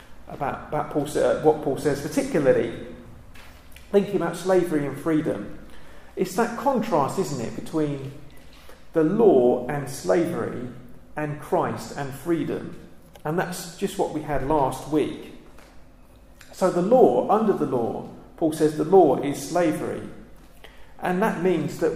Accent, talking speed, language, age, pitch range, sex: British, 135 wpm, English, 40-59, 130-185 Hz, male